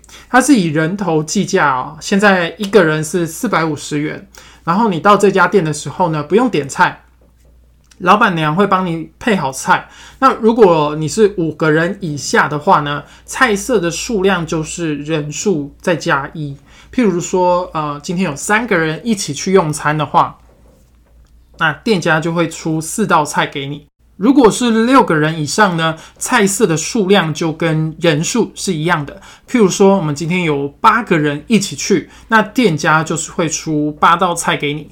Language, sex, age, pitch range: Chinese, male, 20-39, 155-205 Hz